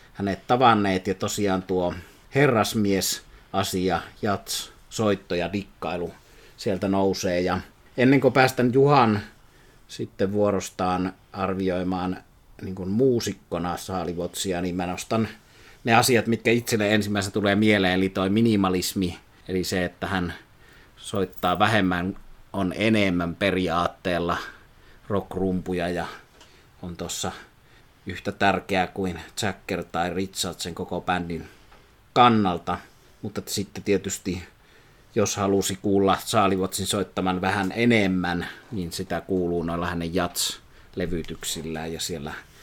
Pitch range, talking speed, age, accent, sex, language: 90-105 Hz, 110 wpm, 30-49, native, male, Finnish